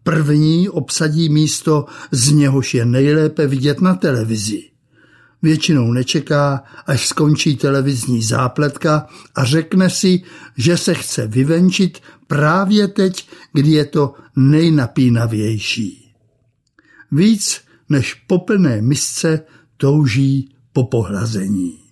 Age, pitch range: 60-79, 125-160 Hz